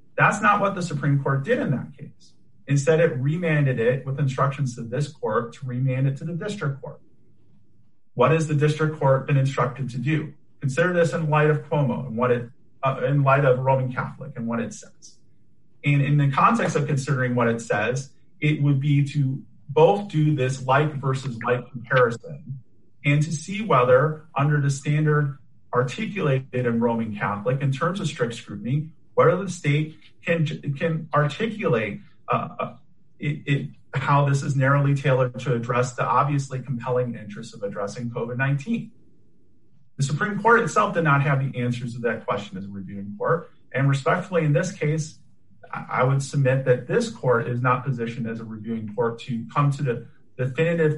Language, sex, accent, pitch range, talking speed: English, male, American, 125-155 Hz, 180 wpm